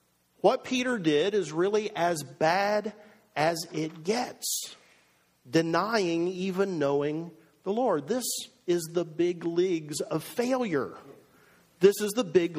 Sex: male